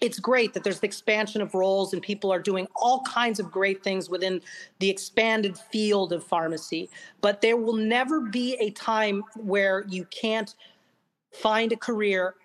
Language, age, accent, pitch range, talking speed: English, 40-59, American, 190-230 Hz, 175 wpm